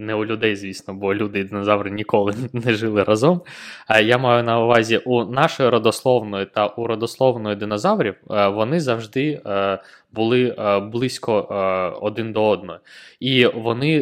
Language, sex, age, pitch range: Ukrainian, male, 20-39, 105-130 Hz